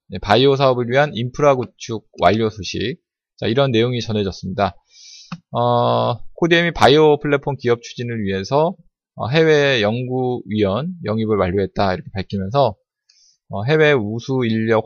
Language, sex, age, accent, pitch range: Korean, male, 20-39, native, 105-150 Hz